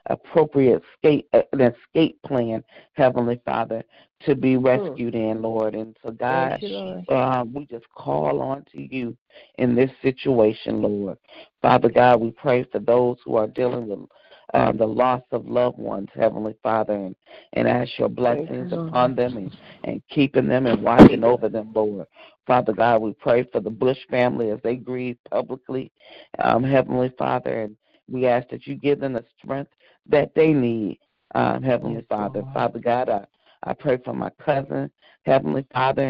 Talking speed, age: 165 wpm, 50-69